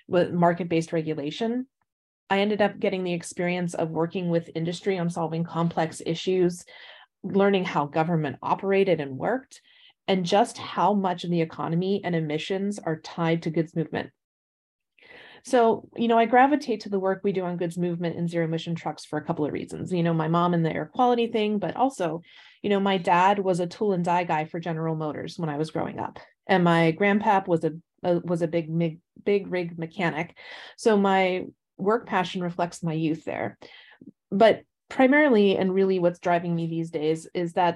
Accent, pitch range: American, 165-195 Hz